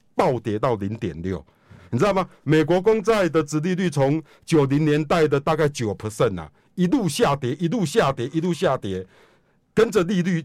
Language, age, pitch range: Chinese, 50-69, 140-185 Hz